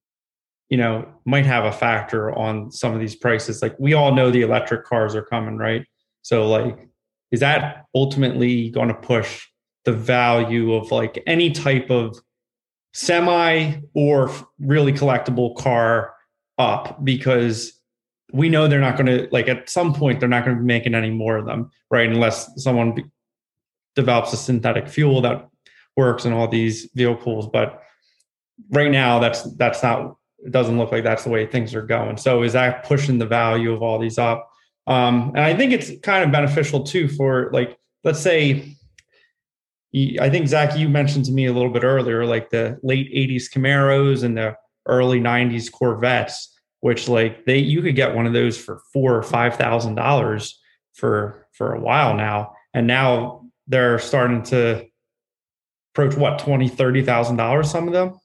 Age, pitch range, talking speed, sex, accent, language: 30-49, 115-140 Hz, 175 wpm, male, American, English